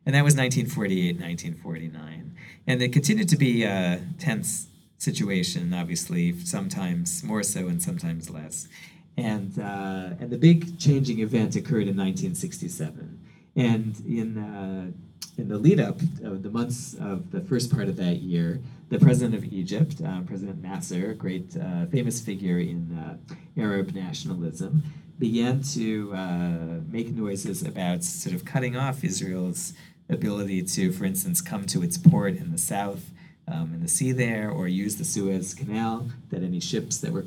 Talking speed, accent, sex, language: 160 wpm, American, male, English